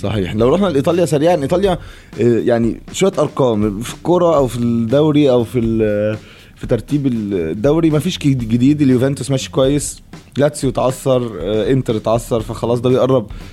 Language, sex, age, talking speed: Arabic, male, 20-39, 145 wpm